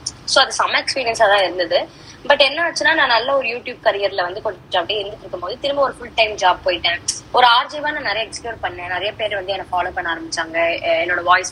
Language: Tamil